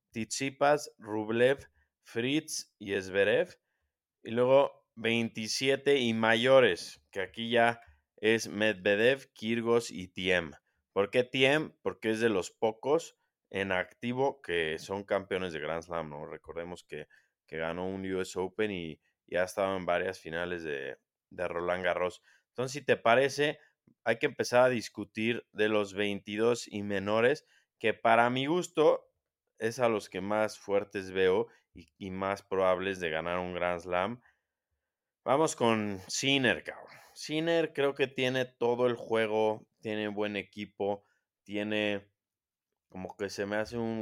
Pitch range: 95-120 Hz